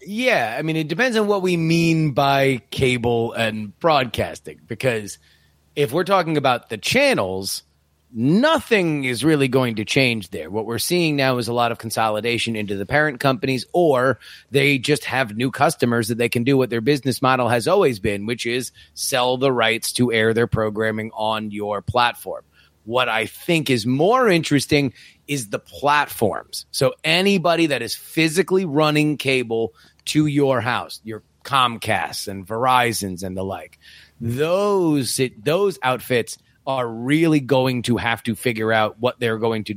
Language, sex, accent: English, male, American